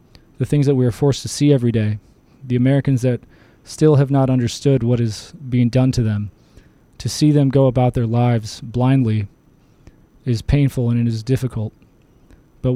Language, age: English, 20-39